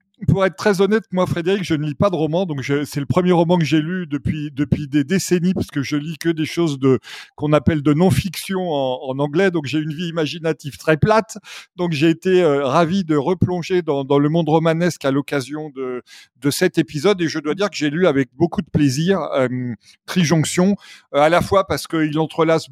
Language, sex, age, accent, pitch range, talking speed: French, male, 40-59, French, 140-180 Hz, 225 wpm